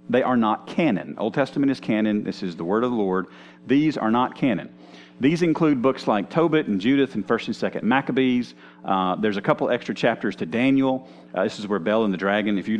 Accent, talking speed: American, 230 wpm